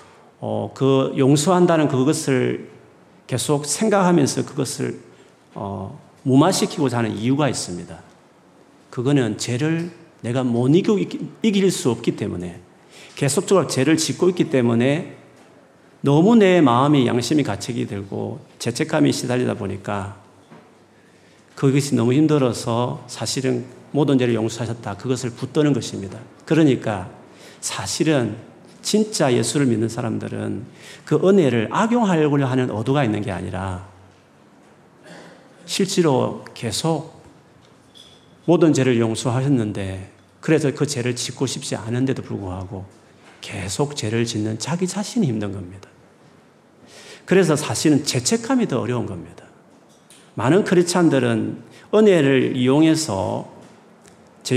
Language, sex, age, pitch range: Korean, male, 40-59, 110-155 Hz